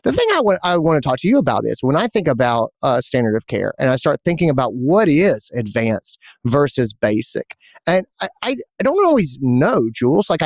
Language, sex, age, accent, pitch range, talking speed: English, male, 30-49, American, 125-195 Hz, 225 wpm